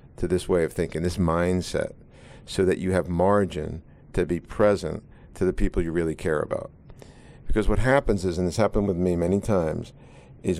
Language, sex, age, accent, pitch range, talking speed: English, male, 50-69, American, 90-105 Hz, 195 wpm